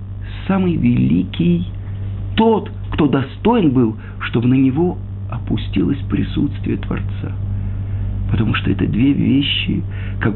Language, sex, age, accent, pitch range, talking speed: Russian, male, 50-69, native, 100-145 Hz, 105 wpm